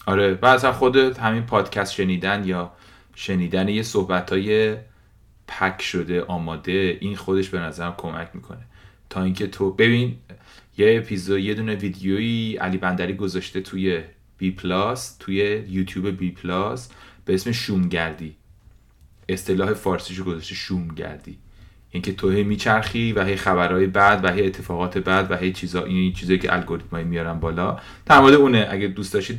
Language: Persian